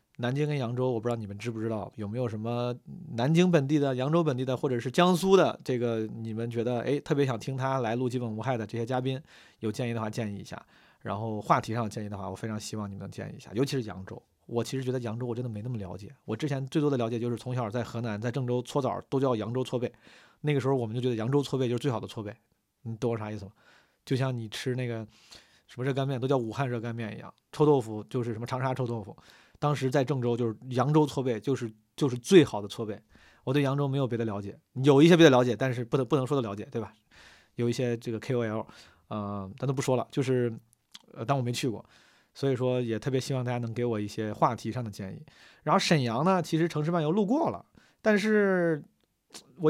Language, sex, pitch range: Chinese, male, 115-140 Hz